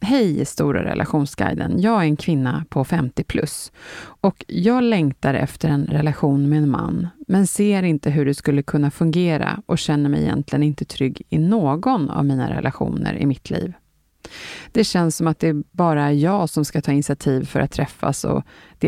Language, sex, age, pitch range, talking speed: Swedish, female, 30-49, 145-180 Hz, 185 wpm